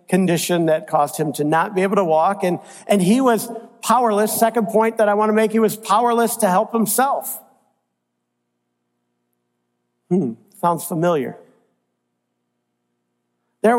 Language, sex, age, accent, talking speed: English, male, 50-69, American, 140 wpm